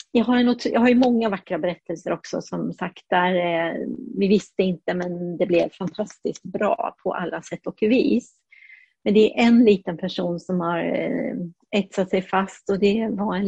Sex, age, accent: female, 30-49, Swedish